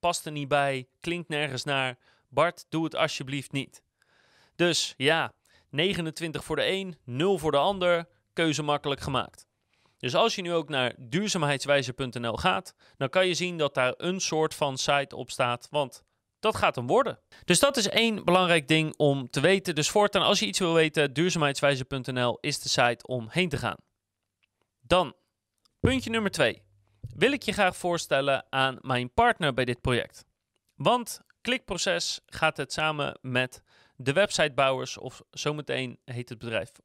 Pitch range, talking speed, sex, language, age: 130-175 Hz, 165 wpm, male, Dutch, 30-49